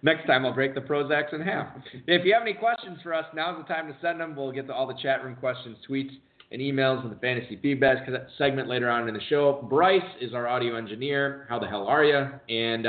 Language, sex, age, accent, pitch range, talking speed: English, male, 30-49, American, 125-165 Hz, 245 wpm